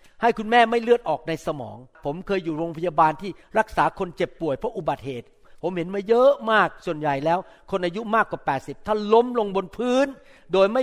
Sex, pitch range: male, 165-215 Hz